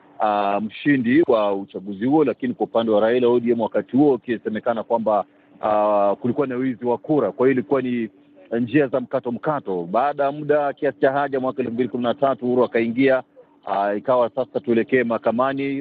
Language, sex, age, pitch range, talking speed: Swahili, male, 40-59, 115-145 Hz, 165 wpm